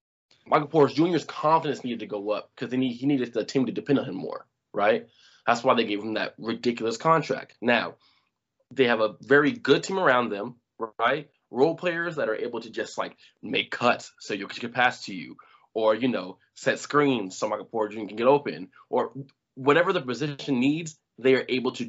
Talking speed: 205 wpm